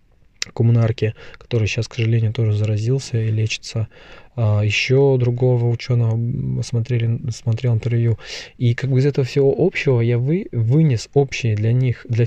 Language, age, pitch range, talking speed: Russian, 20-39, 110-130 Hz, 135 wpm